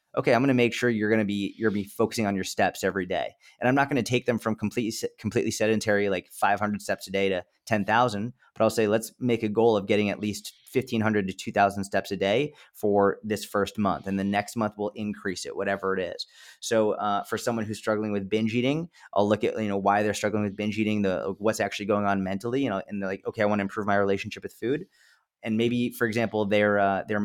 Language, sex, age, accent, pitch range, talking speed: English, male, 30-49, American, 100-115 Hz, 250 wpm